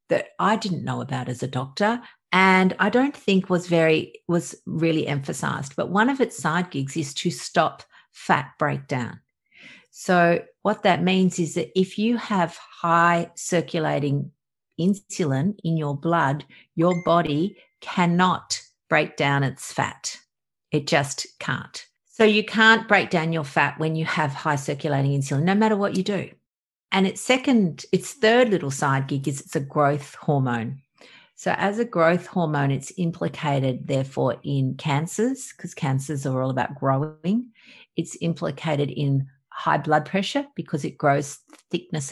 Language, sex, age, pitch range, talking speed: English, female, 50-69, 145-195 Hz, 155 wpm